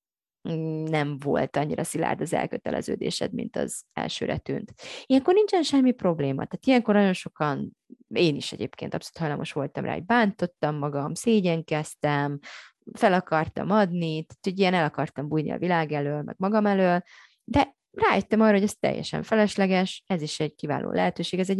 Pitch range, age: 155-210 Hz, 30-49